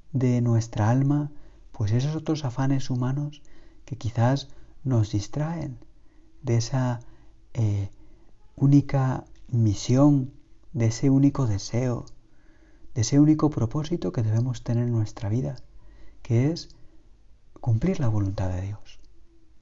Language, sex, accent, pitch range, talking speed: Spanish, male, Spanish, 105-135 Hz, 115 wpm